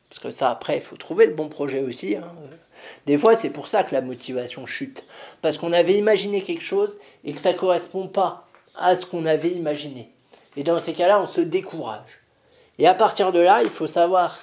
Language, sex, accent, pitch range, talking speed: French, male, French, 135-215 Hz, 220 wpm